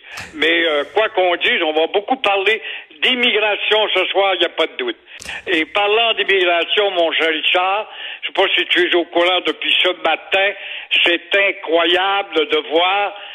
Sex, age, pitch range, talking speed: male, 60-79, 180-240 Hz, 180 wpm